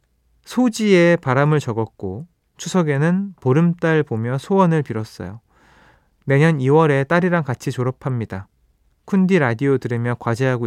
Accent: native